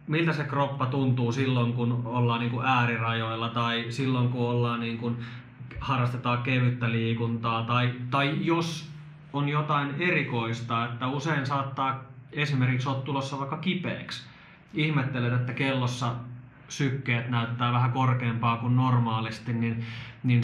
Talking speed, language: 115 wpm, Finnish